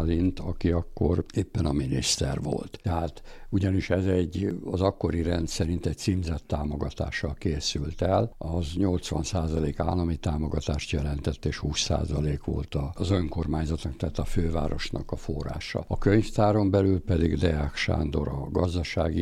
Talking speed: 130 wpm